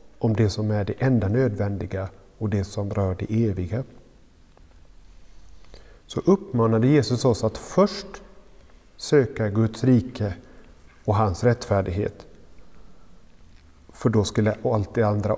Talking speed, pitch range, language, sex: 120 wpm, 100-125 Hz, Swedish, male